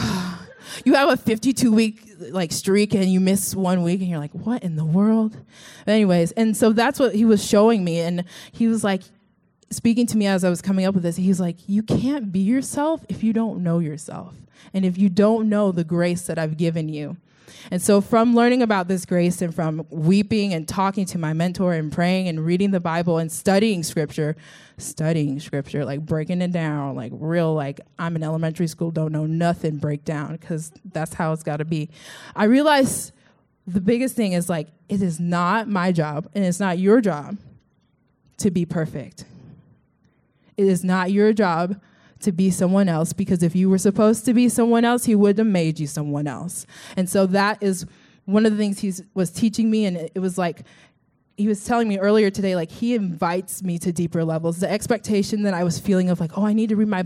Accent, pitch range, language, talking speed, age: American, 170-210 Hz, English, 210 wpm, 20-39